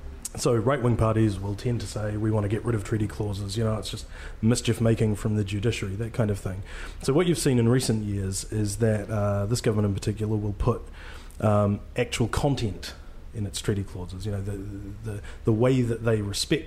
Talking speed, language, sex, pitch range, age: 210 wpm, English, male, 105-115 Hz, 30-49